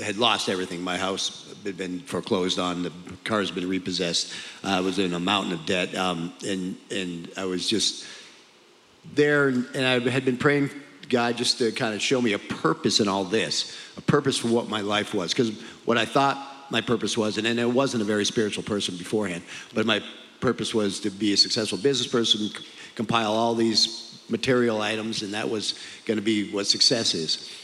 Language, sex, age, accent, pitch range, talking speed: English, male, 50-69, American, 100-120 Hz, 205 wpm